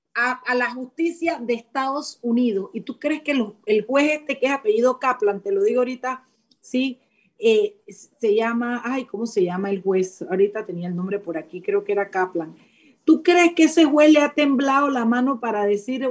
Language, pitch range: Spanish, 205-270 Hz